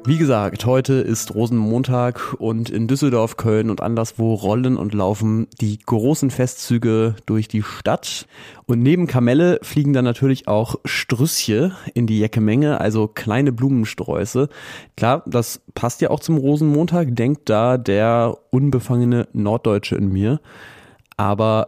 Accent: German